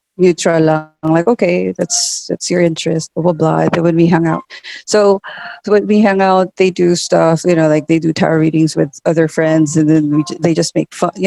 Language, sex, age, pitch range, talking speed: English, female, 30-49, 165-195 Hz, 220 wpm